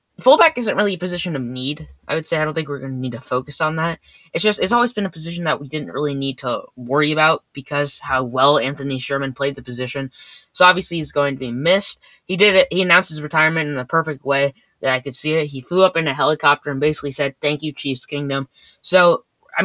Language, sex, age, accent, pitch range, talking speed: English, female, 10-29, American, 130-165 Hz, 250 wpm